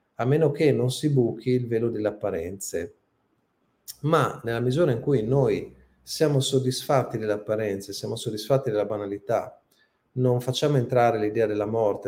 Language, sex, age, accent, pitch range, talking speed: Italian, male, 40-59, native, 105-130 Hz, 150 wpm